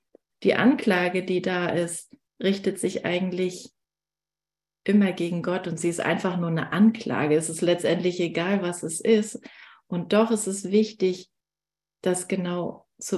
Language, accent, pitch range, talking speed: German, German, 160-200 Hz, 150 wpm